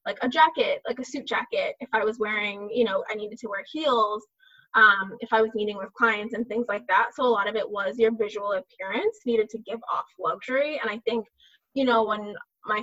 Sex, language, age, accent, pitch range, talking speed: female, English, 20-39, American, 210-250 Hz, 235 wpm